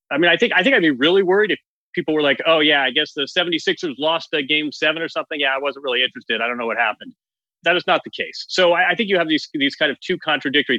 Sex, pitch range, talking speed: male, 140-205 Hz, 295 wpm